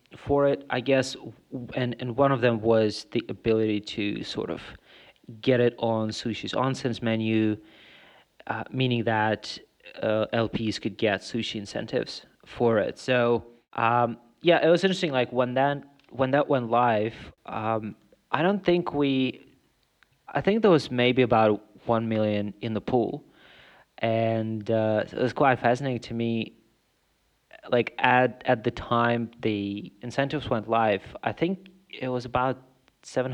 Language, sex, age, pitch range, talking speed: English, male, 30-49, 110-130 Hz, 150 wpm